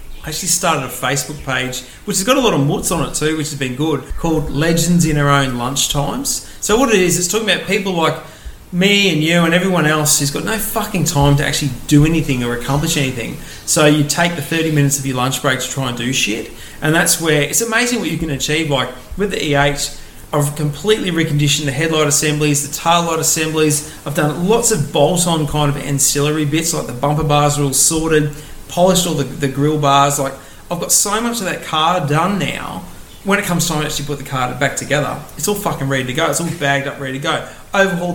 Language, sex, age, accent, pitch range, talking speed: English, male, 30-49, Australian, 140-170 Hz, 235 wpm